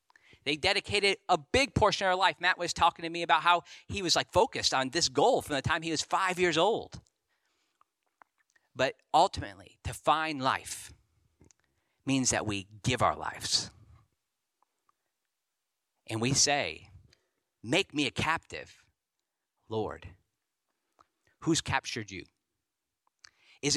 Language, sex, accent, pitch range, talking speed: English, male, American, 105-165 Hz, 135 wpm